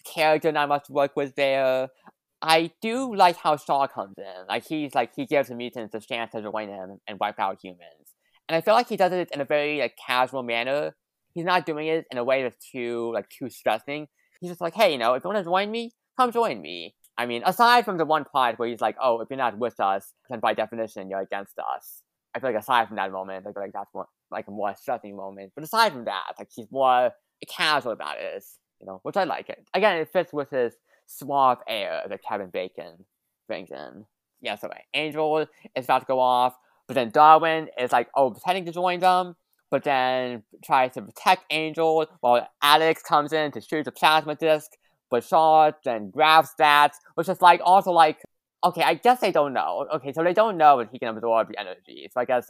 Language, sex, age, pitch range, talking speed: English, male, 20-39, 120-165 Hz, 230 wpm